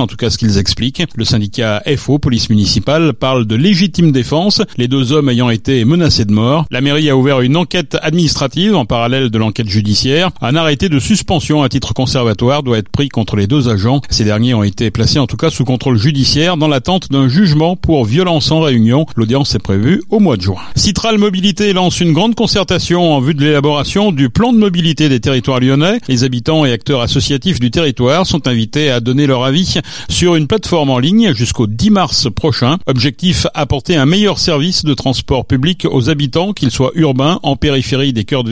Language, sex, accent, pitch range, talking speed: French, male, French, 120-160 Hz, 205 wpm